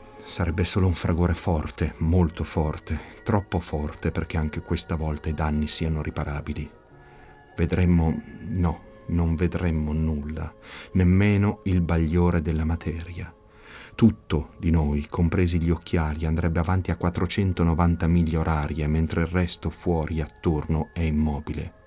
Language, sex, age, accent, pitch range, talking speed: Italian, male, 30-49, native, 80-90 Hz, 125 wpm